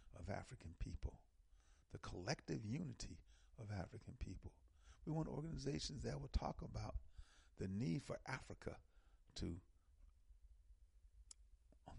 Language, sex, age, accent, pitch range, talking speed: English, male, 50-69, American, 75-90 Hz, 110 wpm